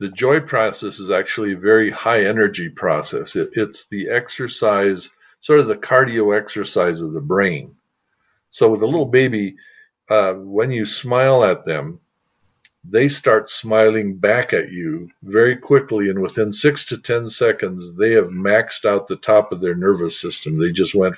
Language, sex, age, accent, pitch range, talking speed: English, male, 50-69, American, 95-120 Hz, 165 wpm